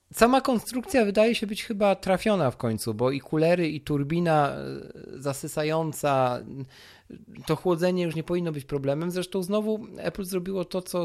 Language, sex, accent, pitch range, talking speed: Polish, male, native, 125-165 Hz, 150 wpm